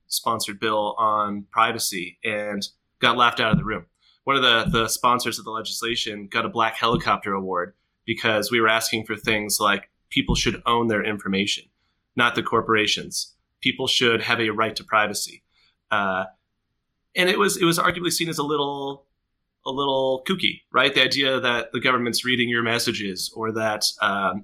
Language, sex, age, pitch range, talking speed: English, male, 30-49, 110-130 Hz, 175 wpm